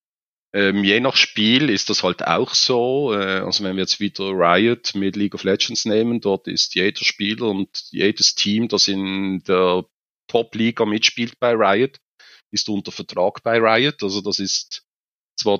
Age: 40-59